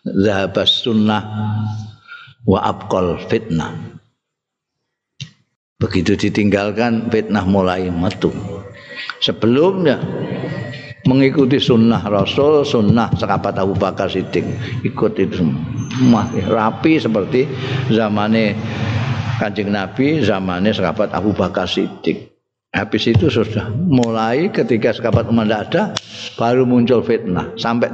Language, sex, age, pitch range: Indonesian, male, 50-69, 100-130 Hz